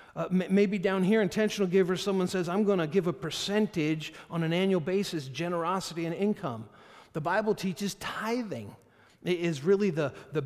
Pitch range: 155-200 Hz